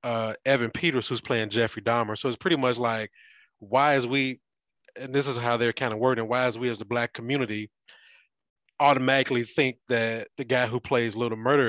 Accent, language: American, English